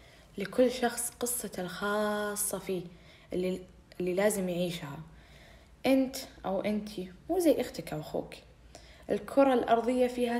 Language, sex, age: Arabic, female, 10-29